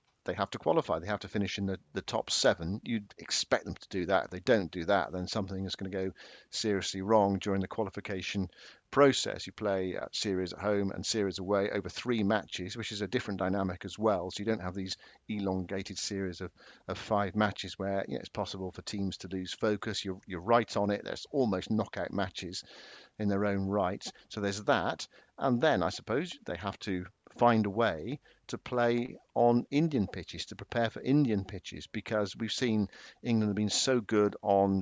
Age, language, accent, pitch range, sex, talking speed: 50-69, English, British, 95-110 Hz, male, 210 wpm